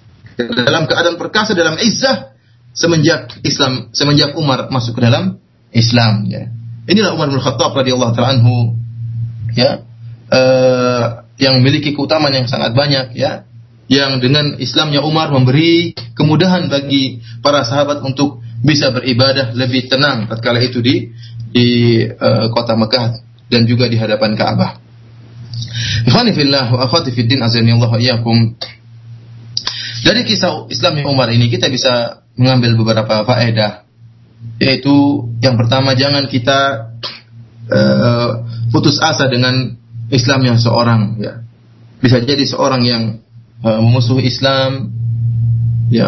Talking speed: 120 wpm